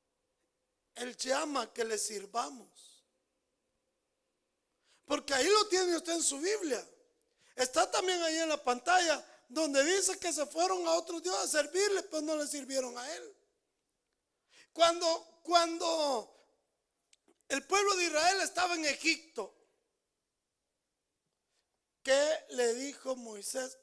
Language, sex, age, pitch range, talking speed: Spanish, male, 50-69, 220-345 Hz, 125 wpm